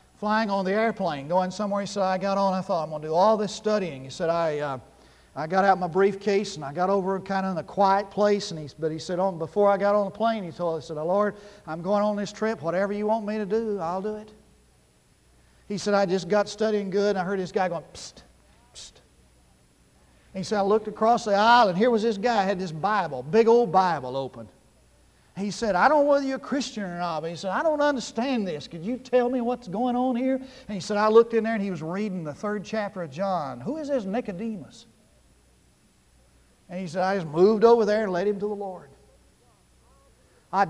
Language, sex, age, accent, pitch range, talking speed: English, male, 50-69, American, 175-225 Hz, 250 wpm